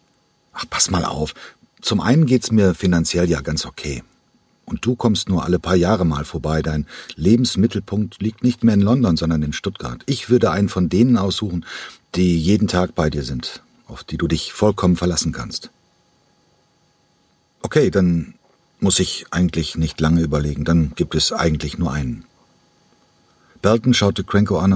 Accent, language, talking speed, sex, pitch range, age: German, German, 165 wpm, male, 85-105 Hz, 50-69